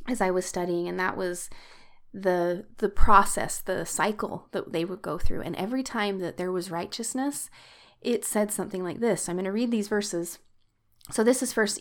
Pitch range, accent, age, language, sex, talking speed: 185-220 Hz, American, 30-49, English, female, 200 wpm